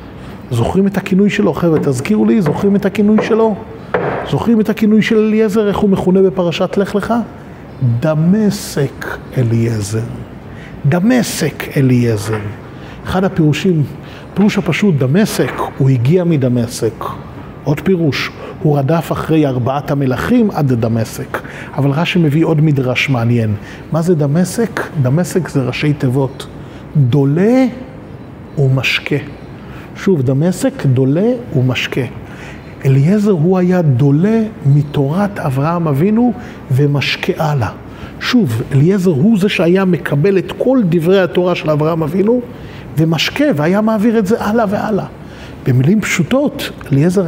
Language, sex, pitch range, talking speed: Hebrew, male, 140-210 Hz, 120 wpm